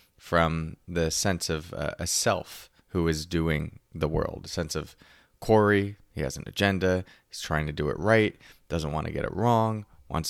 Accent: American